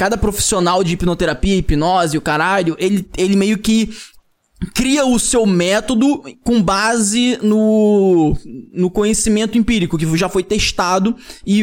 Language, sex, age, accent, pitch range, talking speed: Portuguese, male, 20-39, Brazilian, 180-230 Hz, 135 wpm